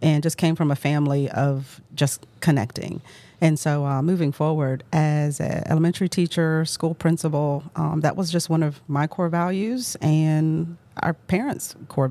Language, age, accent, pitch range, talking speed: English, 40-59, American, 145-160 Hz, 165 wpm